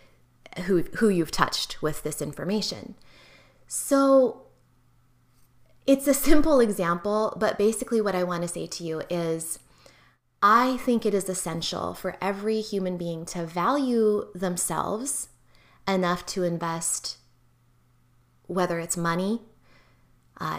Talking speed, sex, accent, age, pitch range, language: 120 wpm, female, American, 20-39, 170-205 Hz, English